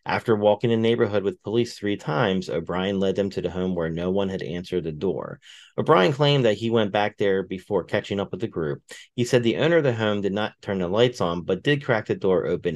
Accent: American